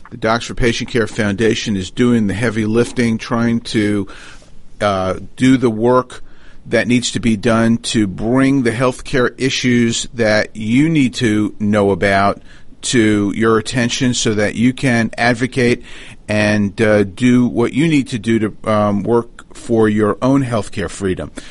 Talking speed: 165 wpm